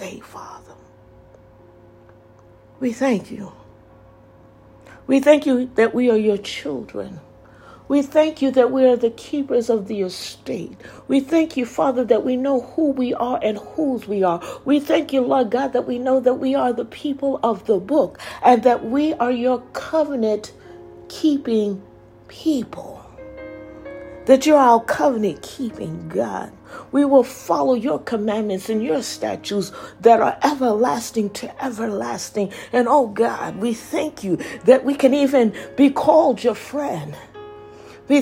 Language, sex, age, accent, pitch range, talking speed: English, female, 60-79, American, 215-280 Hz, 145 wpm